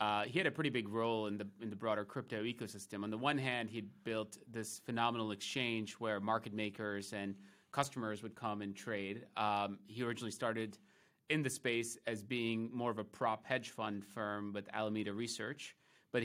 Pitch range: 105-120 Hz